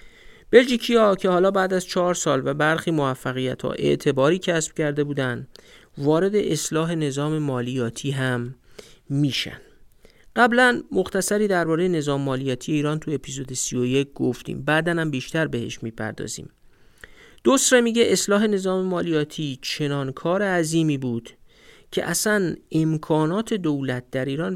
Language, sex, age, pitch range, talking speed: Persian, male, 50-69, 140-180 Hz, 125 wpm